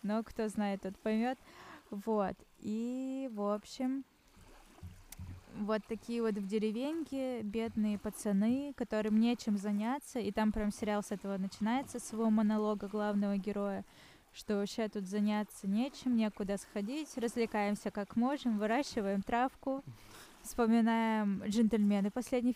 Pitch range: 205-235 Hz